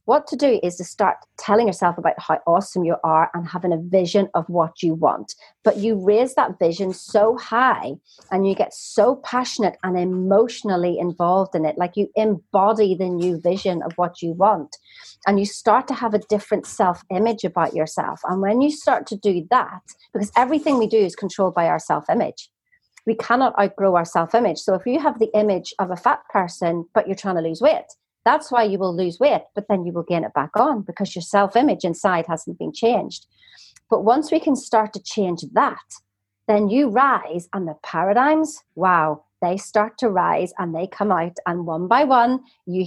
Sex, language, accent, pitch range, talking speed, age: female, English, British, 175-230 Hz, 205 wpm, 40-59